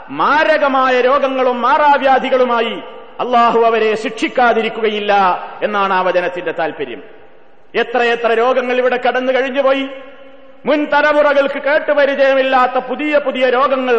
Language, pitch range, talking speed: Malayalam, 250-285 Hz, 85 wpm